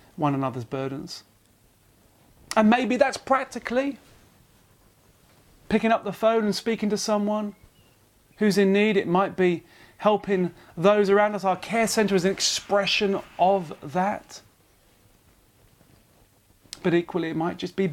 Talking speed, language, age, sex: 130 wpm, English, 30-49, male